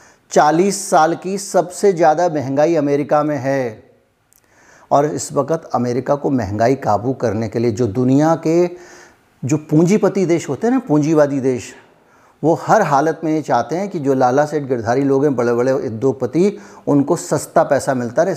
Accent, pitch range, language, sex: native, 125-160 Hz, Hindi, male